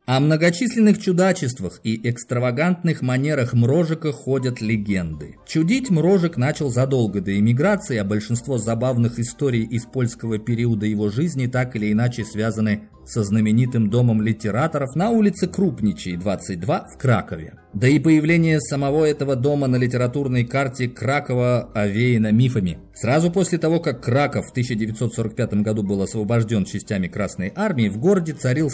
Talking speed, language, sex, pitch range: 140 wpm, Russian, male, 105-140 Hz